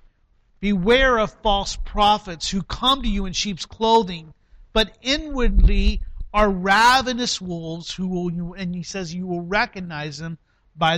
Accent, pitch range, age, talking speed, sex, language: American, 190-245 Hz, 50-69, 140 wpm, male, English